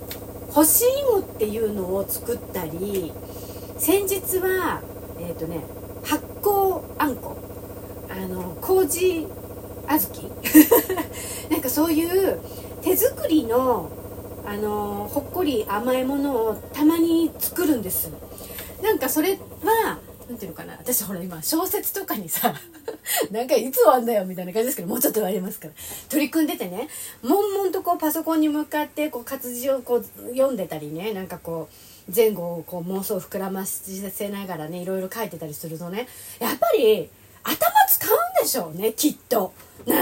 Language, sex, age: Japanese, female, 40-59